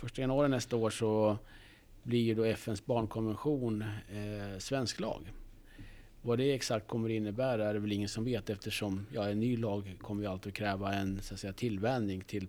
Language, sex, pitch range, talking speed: Swedish, male, 100-115 Hz, 185 wpm